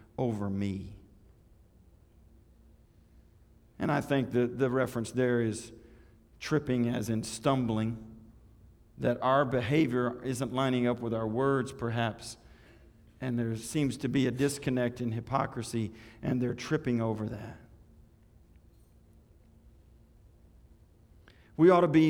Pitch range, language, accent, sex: 105-130 Hz, English, American, male